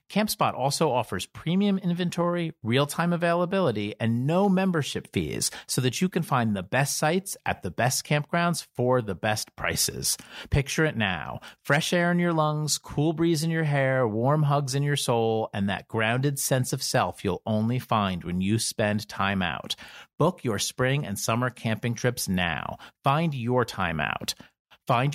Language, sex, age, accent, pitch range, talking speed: English, male, 40-59, American, 110-160 Hz, 170 wpm